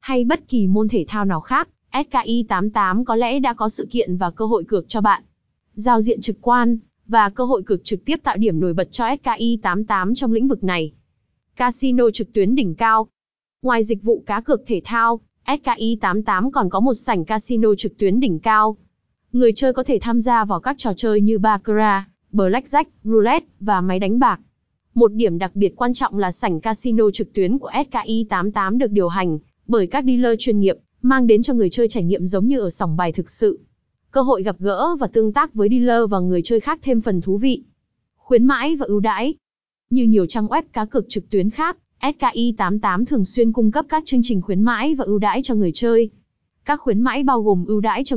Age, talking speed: 20-39, 220 wpm